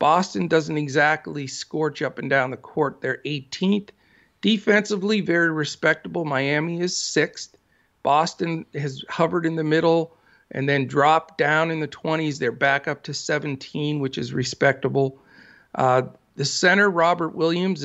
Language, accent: English, American